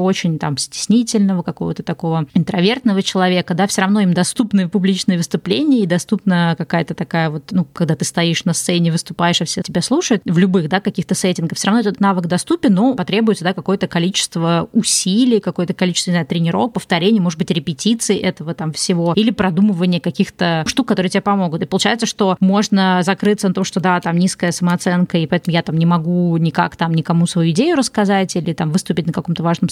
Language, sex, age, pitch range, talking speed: Russian, female, 20-39, 175-205 Hz, 190 wpm